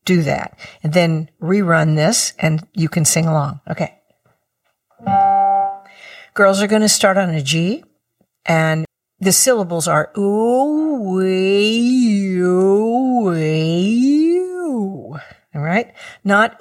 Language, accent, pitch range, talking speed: English, American, 180-230 Hz, 110 wpm